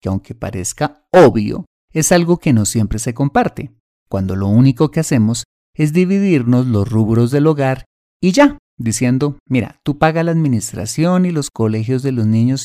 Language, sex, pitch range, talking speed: Spanish, male, 110-150 Hz, 170 wpm